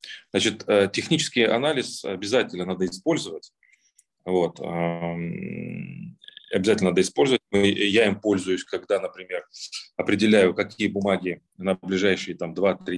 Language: Russian